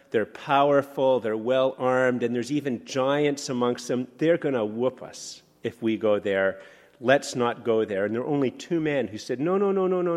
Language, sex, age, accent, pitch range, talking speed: English, male, 40-59, American, 120-160 Hz, 210 wpm